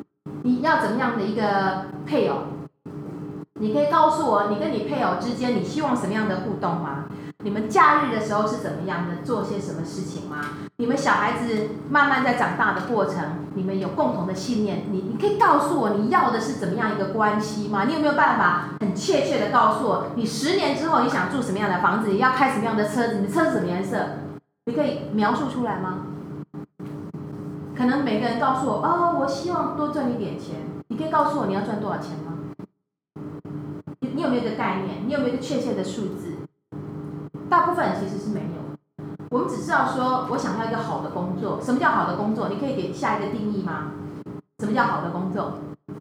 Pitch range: 185-265 Hz